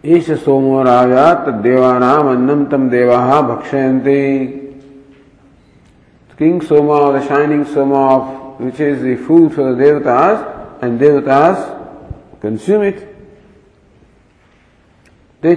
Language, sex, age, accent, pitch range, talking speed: English, male, 50-69, Indian, 130-145 Hz, 105 wpm